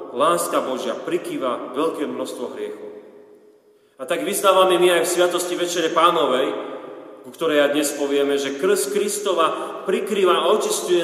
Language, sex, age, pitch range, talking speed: Slovak, male, 40-59, 120-145 Hz, 140 wpm